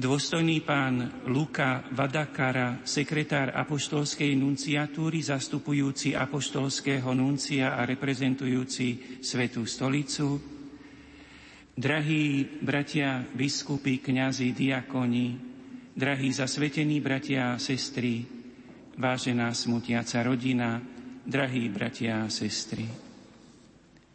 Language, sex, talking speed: Slovak, male, 75 wpm